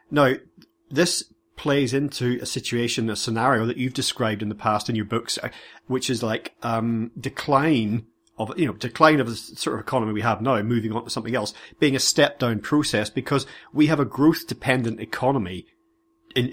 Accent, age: British, 40-59